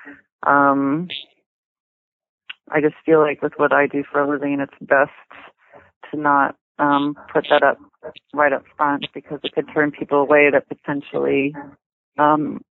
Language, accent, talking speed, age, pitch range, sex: English, American, 150 wpm, 30-49, 145-155 Hz, female